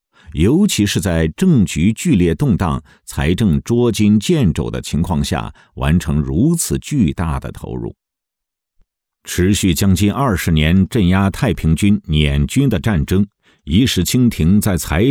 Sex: male